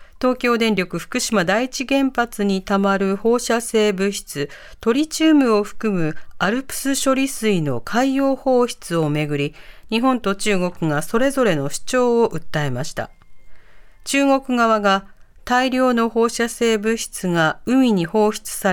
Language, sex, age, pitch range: Japanese, female, 40-59, 180-250 Hz